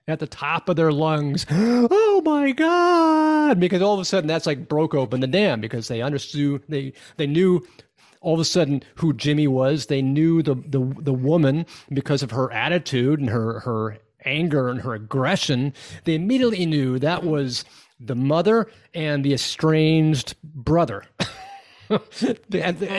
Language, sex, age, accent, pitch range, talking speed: English, male, 30-49, American, 125-155 Hz, 160 wpm